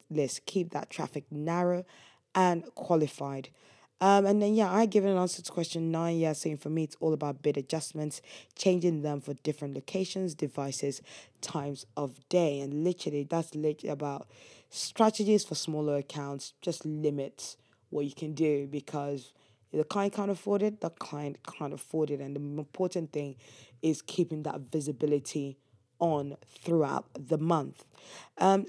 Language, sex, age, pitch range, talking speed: English, female, 20-39, 145-175 Hz, 155 wpm